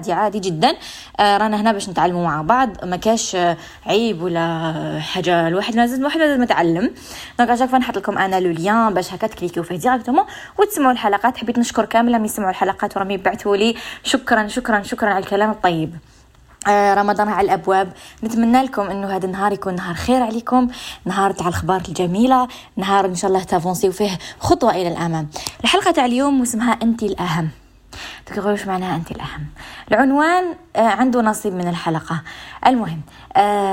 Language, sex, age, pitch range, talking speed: Arabic, female, 20-39, 185-250 Hz, 160 wpm